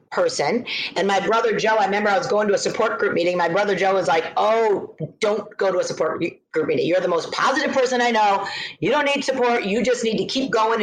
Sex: female